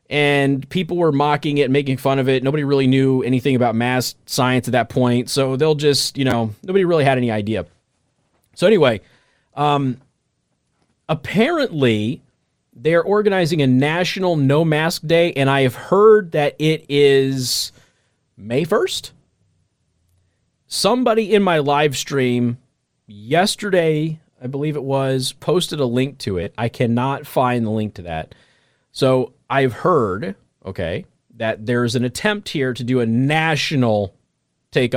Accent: American